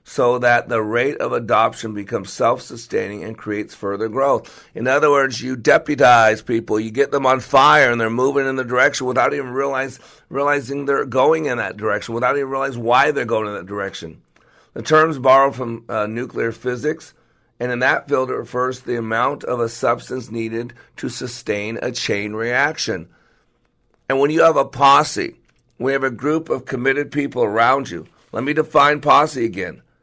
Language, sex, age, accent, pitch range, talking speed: English, male, 50-69, American, 115-135 Hz, 180 wpm